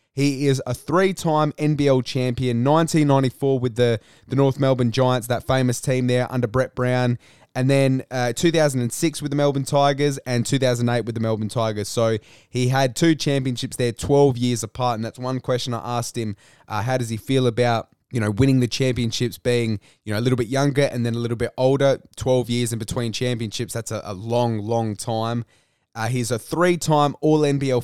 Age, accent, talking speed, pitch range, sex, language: 20-39, Australian, 195 wpm, 120-140 Hz, male, English